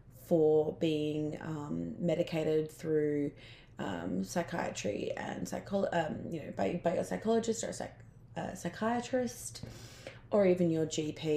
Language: English